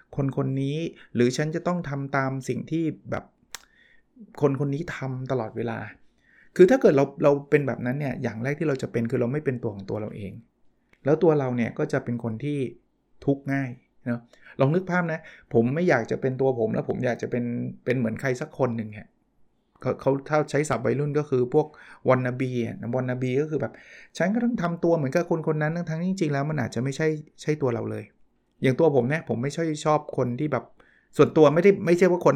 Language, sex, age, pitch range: Thai, male, 20-39, 125-155 Hz